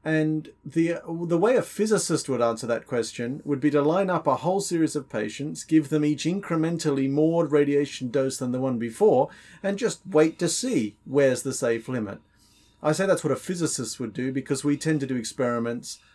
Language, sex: English, male